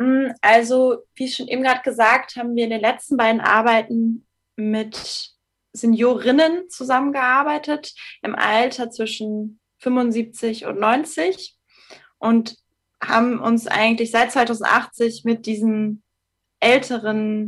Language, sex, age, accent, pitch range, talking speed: German, female, 20-39, German, 215-245 Hz, 105 wpm